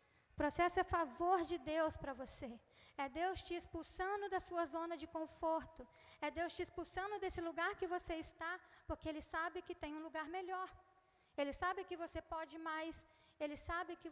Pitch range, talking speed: 310-370 Hz, 185 wpm